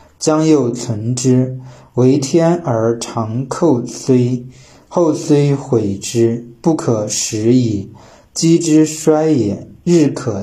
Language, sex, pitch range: Chinese, male, 115-145 Hz